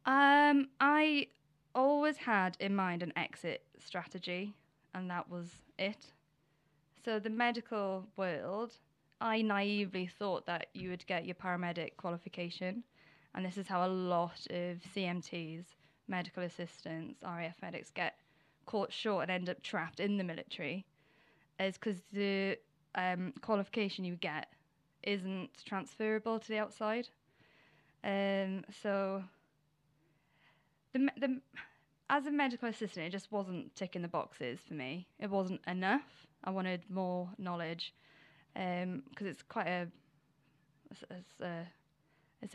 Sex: female